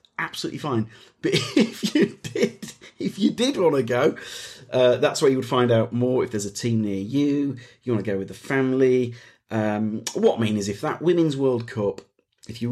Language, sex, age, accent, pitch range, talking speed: English, male, 40-59, British, 105-130 Hz, 210 wpm